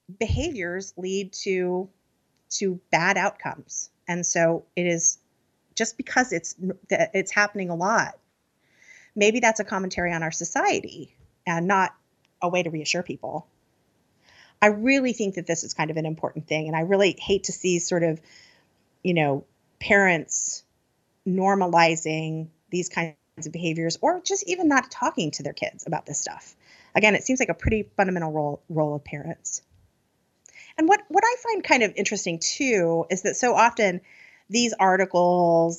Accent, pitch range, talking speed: American, 165-210 Hz, 160 wpm